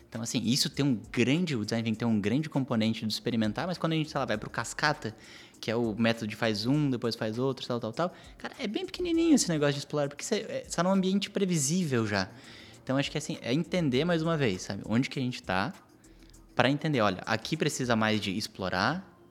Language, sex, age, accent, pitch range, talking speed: Portuguese, male, 20-39, Brazilian, 115-155 Hz, 235 wpm